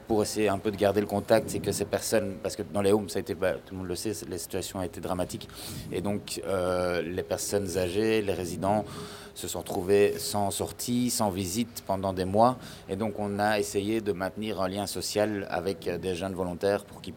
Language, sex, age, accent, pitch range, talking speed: French, male, 30-49, French, 95-110 Hz, 225 wpm